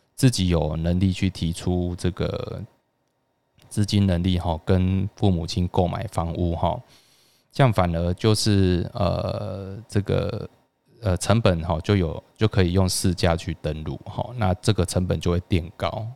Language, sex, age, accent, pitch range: Chinese, male, 20-39, native, 85-110 Hz